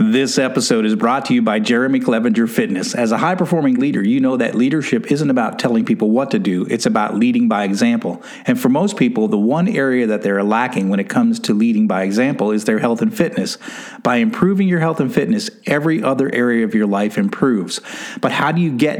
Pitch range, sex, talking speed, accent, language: 145-235 Hz, male, 220 wpm, American, English